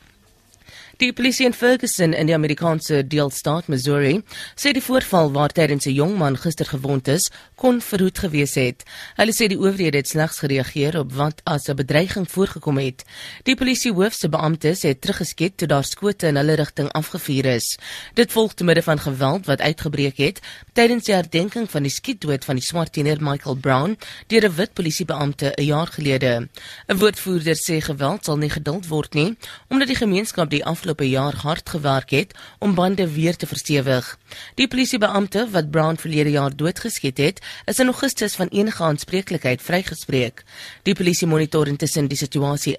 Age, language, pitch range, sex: 30-49, English, 145-195 Hz, female